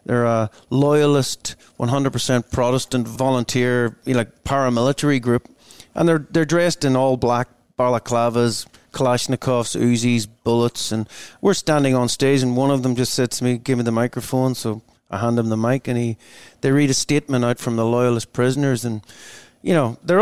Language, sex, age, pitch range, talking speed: English, male, 30-49, 115-140 Hz, 180 wpm